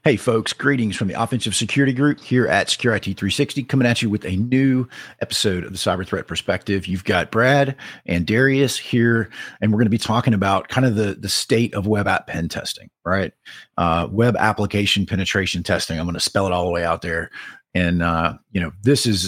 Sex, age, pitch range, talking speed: male, 40-59, 90-115 Hz, 220 wpm